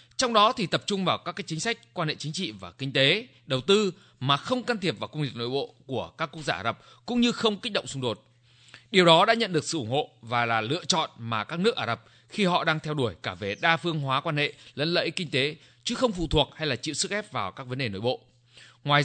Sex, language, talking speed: male, Vietnamese, 285 wpm